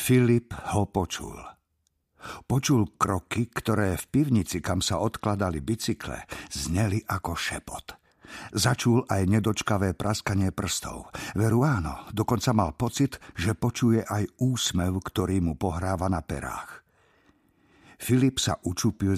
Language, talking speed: Slovak, 115 wpm